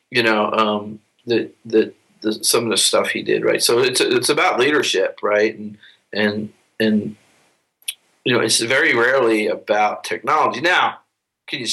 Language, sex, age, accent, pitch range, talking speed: English, male, 40-59, American, 110-145 Hz, 165 wpm